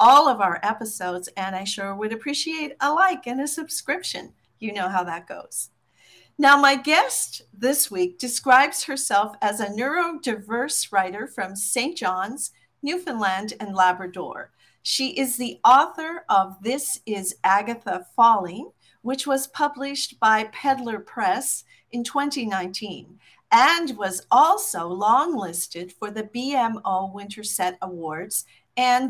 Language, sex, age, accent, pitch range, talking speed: English, female, 50-69, American, 200-270 Hz, 130 wpm